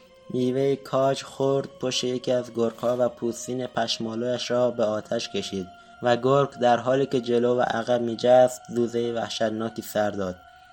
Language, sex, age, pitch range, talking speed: Persian, male, 20-39, 110-125 Hz, 155 wpm